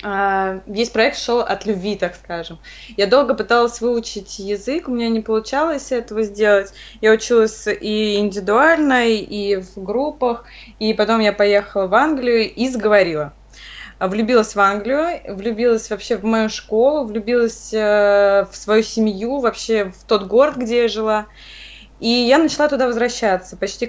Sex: female